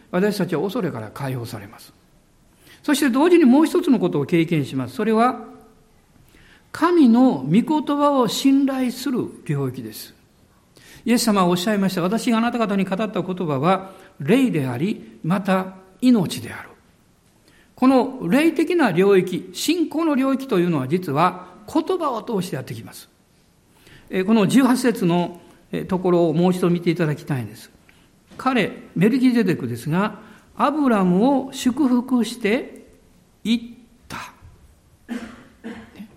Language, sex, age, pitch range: Japanese, male, 60-79, 170-260 Hz